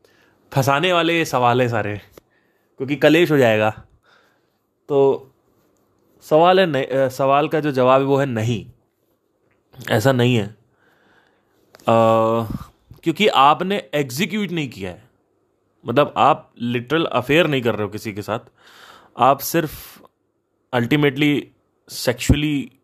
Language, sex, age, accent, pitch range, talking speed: Hindi, male, 30-49, native, 110-135 Hz, 125 wpm